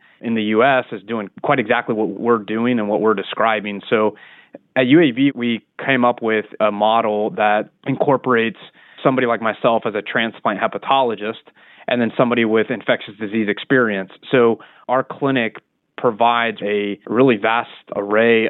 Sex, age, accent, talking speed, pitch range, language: male, 20-39, American, 150 wpm, 105-115 Hz, English